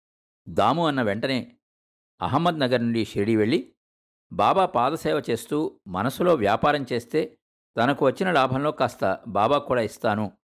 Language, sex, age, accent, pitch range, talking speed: Telugu, male, 50-69, native, 95-145 Hz, 115 wpm